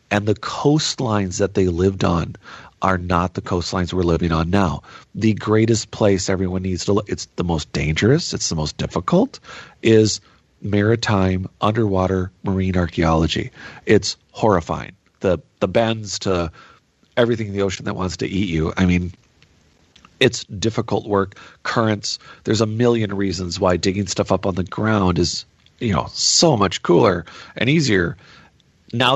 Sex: male